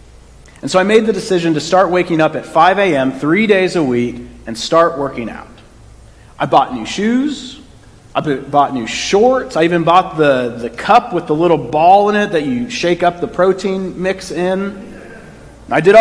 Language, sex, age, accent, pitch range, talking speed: English, male, 40-59, American, 135-185 Hz, 190 wpm